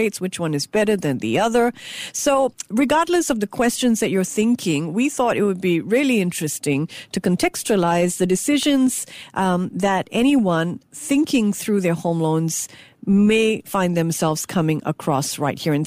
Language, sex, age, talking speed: English, female, 50-69, 160 wpm